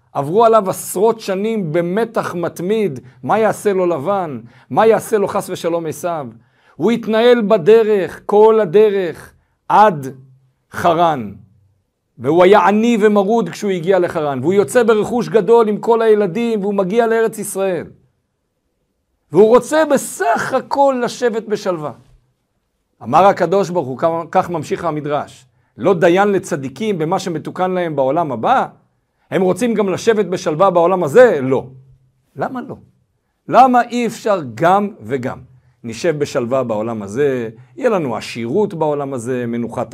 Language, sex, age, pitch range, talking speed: Hebrew, male, 50-69, 140-215 Hz, 130 wpm